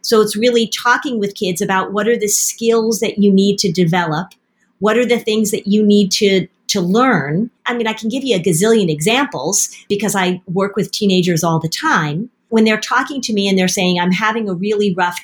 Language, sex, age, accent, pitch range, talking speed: English, female, 40-59, American, 190-230 Hz, 220 wpm